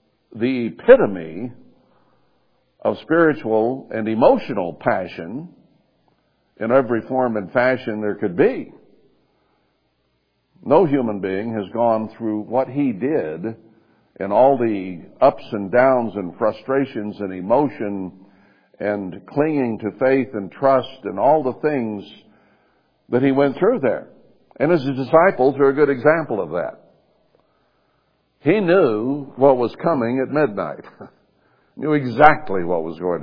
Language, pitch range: English, 105-135 Hz